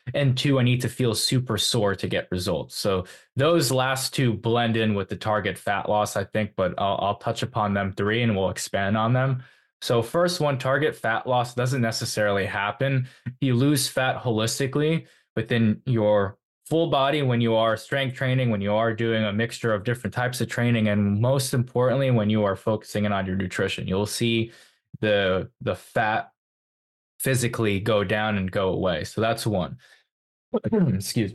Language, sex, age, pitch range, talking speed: English, male, 20-39, 105-130 Hz, 180 wpm